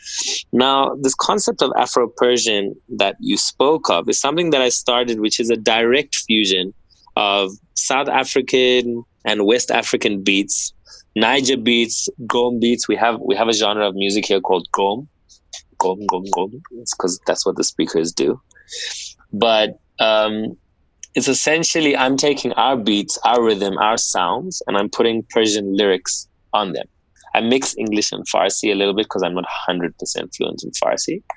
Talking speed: 160 wpm